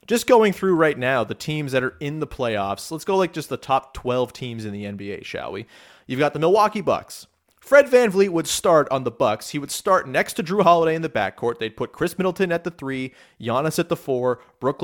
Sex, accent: male, American